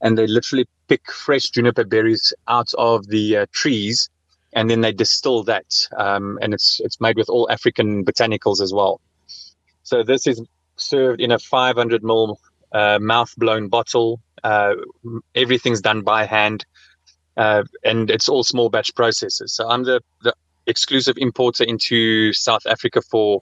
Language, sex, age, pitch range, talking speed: English, male, 30-49, 100-120 Hz, 160 wpm